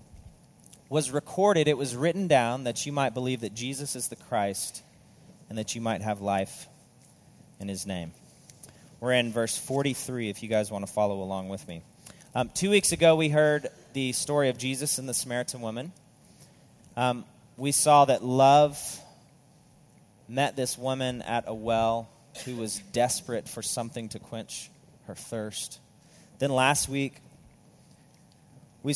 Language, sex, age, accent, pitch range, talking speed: English, male, 30-49, American, 115-145 Hz, 155 wpm